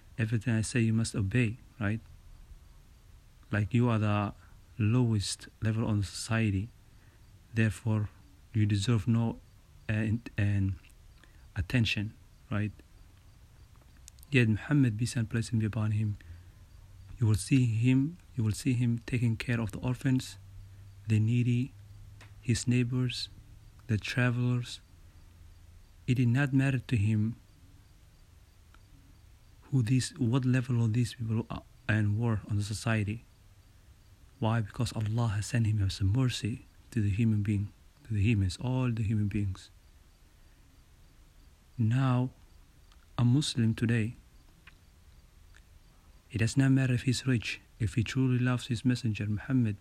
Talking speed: 125 wpm